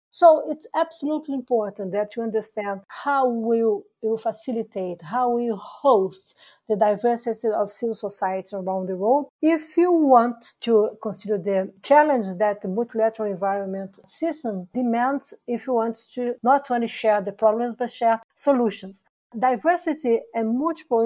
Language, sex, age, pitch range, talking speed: English, female, 50-69, 210-255 Hz, 140 wpm